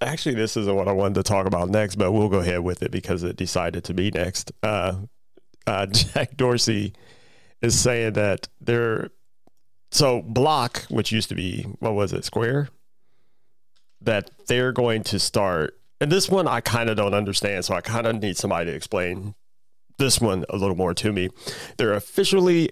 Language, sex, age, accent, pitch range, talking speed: English, male, 30-49, American, 100-135 Hz, 185 wpm